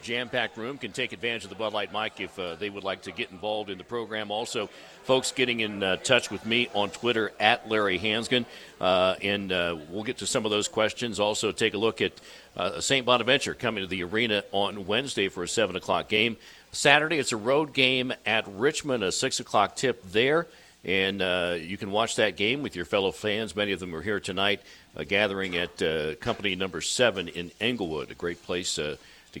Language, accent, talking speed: English, American, 215 wpm